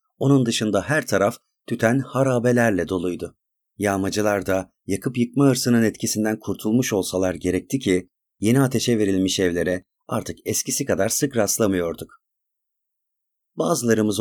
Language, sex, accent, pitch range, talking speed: Turkish, male, native, 95-130 Hz, 115 wpm